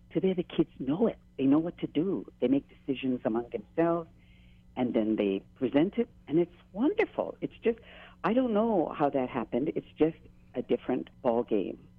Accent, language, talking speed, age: American, English, 185 wpm, 50-69